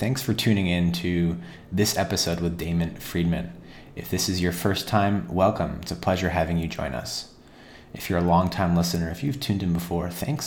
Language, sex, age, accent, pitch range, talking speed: English, male, 30-49, American, 85-105 Hz, 200 wpm